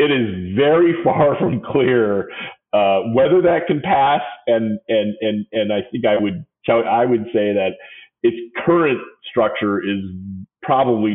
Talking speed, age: 155 wpm, 40-59